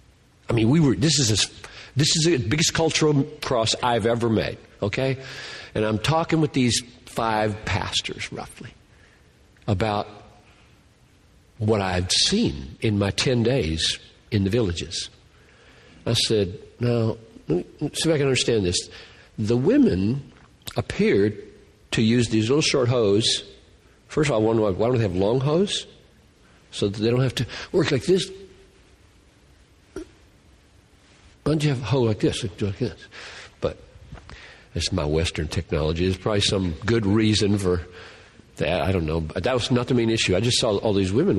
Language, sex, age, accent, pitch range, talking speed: English, male, 60-79, American, 95-125 Hz, 160 wpm